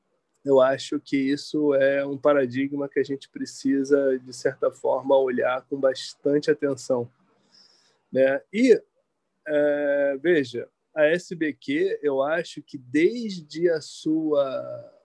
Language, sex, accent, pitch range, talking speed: Portuguese, male, Brazilian, 135-195 Hz, 115 wpm